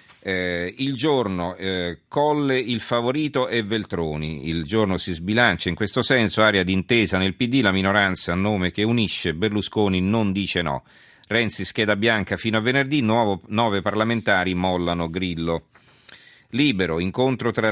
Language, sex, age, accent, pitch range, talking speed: Italian, male, 40-59, native, 90-110 Hz, 150 wpm